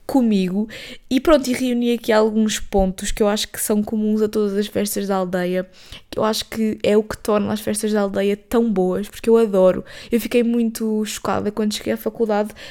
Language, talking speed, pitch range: Portuguese, 210 wpm, 205-235 Hz